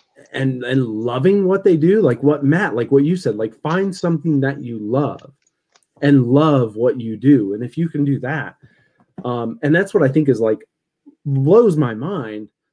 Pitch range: 120-150 Hz